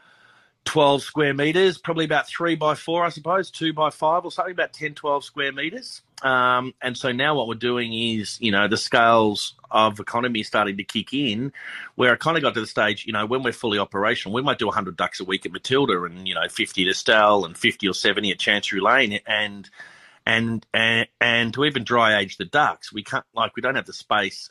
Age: 30-49